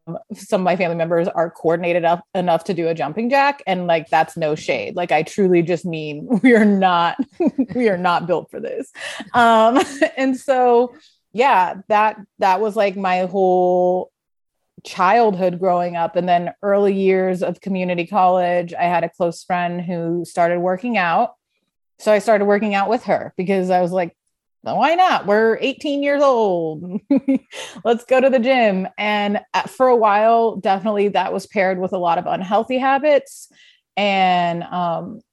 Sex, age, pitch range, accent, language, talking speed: female, 30-49, 175-220 Hz, American, English, 170 wpm